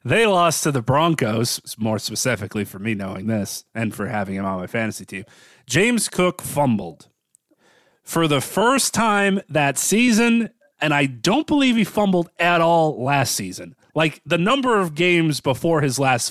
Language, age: English, 30-49